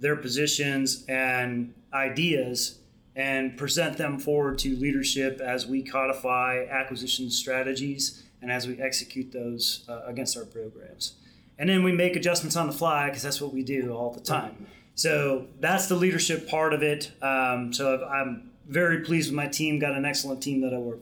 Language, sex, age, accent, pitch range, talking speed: English, male, 30-49, American, 135-160 Hz, 175 wpm